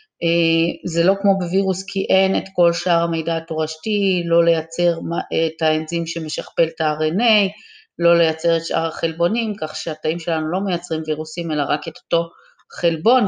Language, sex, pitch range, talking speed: Hebrew, female, 155-175 Hz, 155 wpm